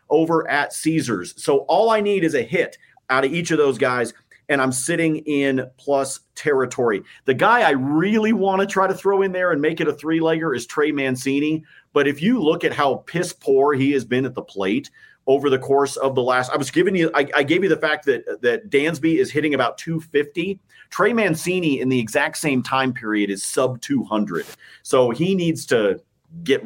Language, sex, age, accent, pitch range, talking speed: English, male, 40-59, American, 135-190 Hz, 210 wpm